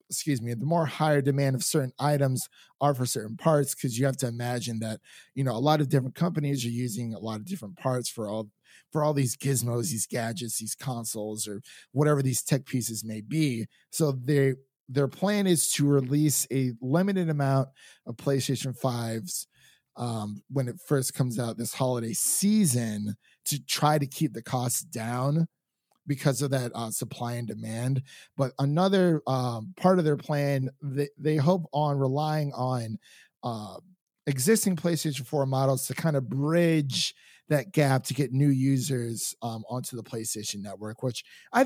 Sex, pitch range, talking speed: male, 125-155 Hz, 175 wpm